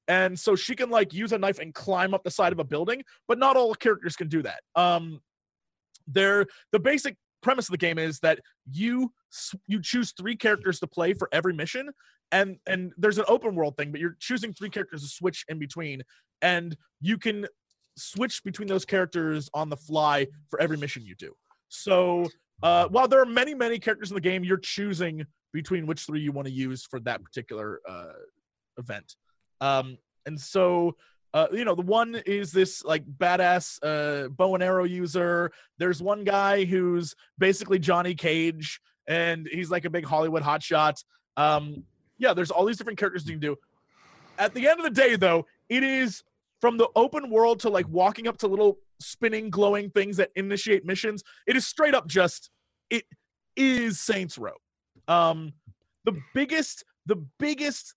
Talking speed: 185 wpm